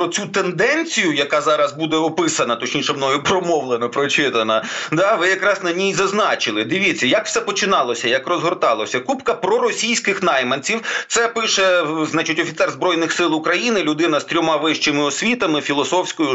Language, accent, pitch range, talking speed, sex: Ukrainian, native, 160-220 Hz, 145 wpm, male